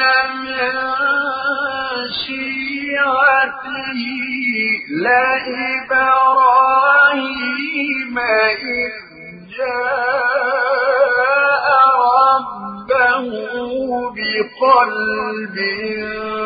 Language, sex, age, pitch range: Arabic, male, 50-69, 215-265 Hz